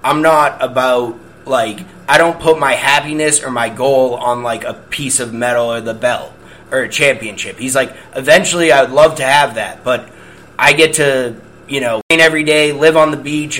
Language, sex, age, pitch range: English, male, 30-49, 135-160 Hz